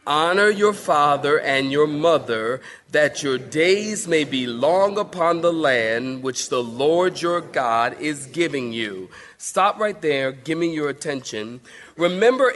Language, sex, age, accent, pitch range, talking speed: English, male, 40-59, American, 135-190 Hz, 150 wpm